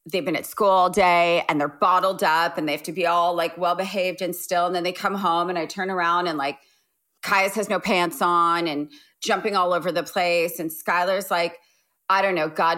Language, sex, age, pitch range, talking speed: English, female, 30-49, 175-230 Hz, 230 wpm